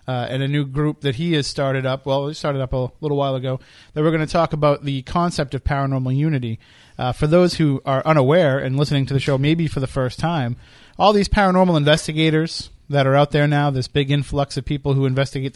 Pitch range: 130-155 Hz